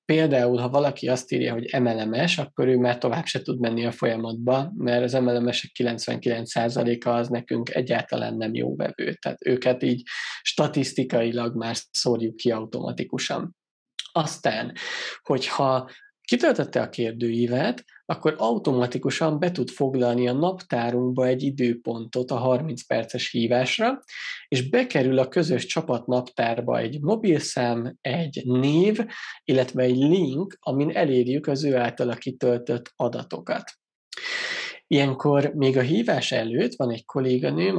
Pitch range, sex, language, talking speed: 120-140 Hz, male, Hungarian, 125 wpm